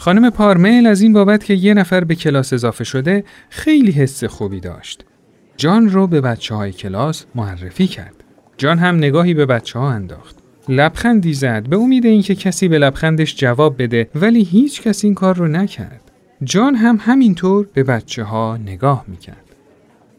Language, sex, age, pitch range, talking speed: Persian, male, 40-59, 135-200 Hz, 165 wpm